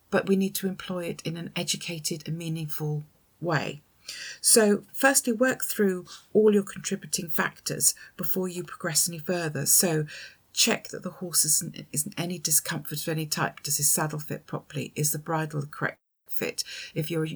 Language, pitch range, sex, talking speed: English, 150-190 Hz, female, 175 wpm